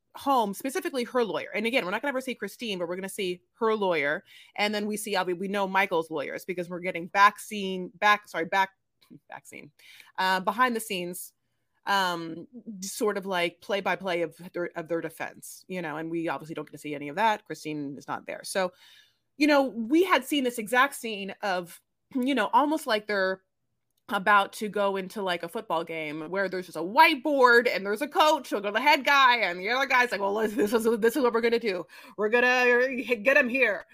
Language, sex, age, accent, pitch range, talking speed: English, female, 30-49, American, 180-250 Hz, 215 wpm